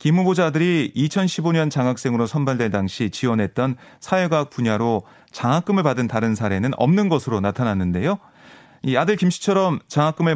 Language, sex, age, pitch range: Korean, male, 30-49, 125-185 Hz